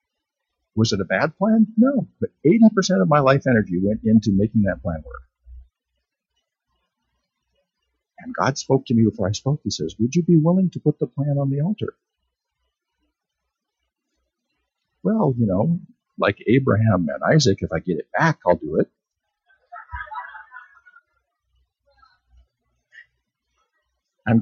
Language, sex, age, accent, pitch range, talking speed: English, male, 50-69, American, 105-175 Hz, 135 wpm